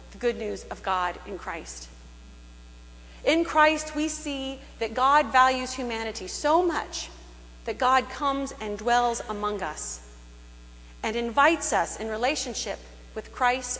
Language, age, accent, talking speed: English, 40-59, American, 130 wpm